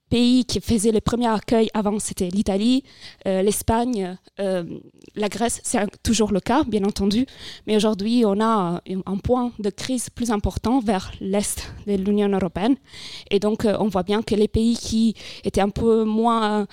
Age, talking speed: 20-39, 175 wpm